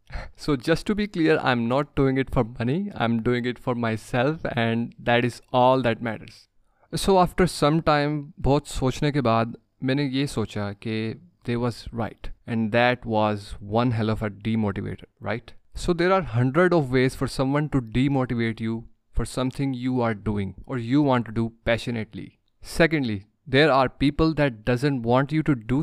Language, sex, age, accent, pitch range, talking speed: English, male, 20-39, Indian, 115-140 Hz, 170 wpm